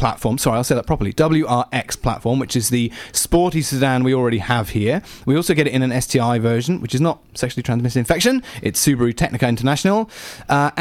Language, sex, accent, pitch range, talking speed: English, male, British, 125-170 Hz, 200 wpm